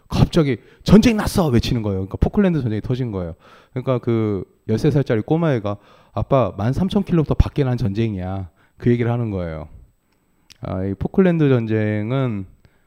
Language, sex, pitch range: Korean, male, 100-140 Hz